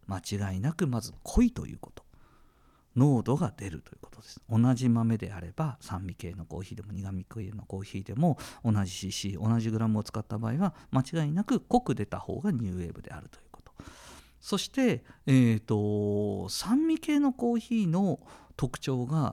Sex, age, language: male, 50-69, Japanese